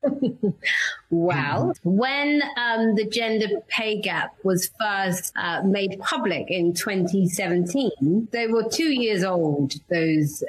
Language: English